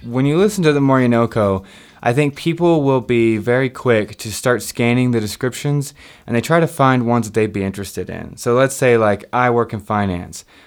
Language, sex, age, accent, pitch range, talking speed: English, male, 20-39, American, 105-130 Hz, 210 wpm